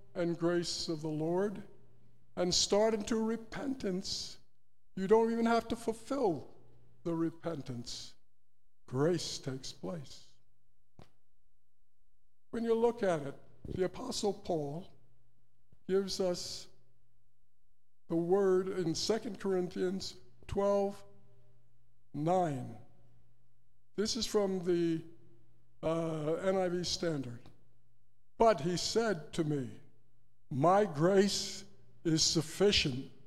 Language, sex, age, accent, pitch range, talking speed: English, male, 60-79, American, 120-195 Hz, 95 wpm